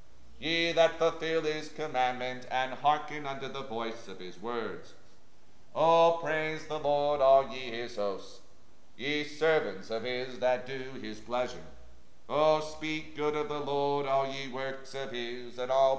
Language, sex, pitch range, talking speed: English, male, 125-155 Hz, 160 wpm